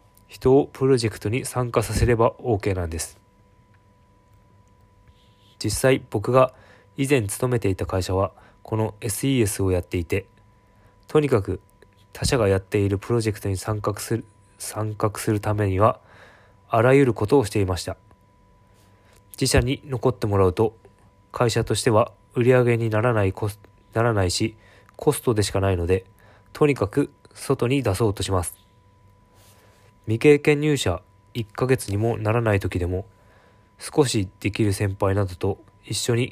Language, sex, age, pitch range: Japanese, male, 20-39, 100-115 Hz